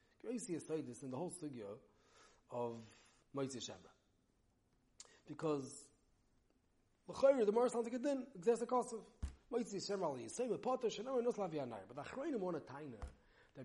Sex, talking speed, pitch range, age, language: male, 175 wpm, 140-210 Hz, 30-49, English